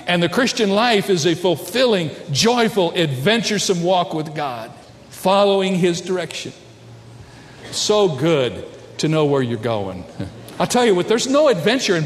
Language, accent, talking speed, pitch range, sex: English, American, 150 wpm, 120-185 Hz, male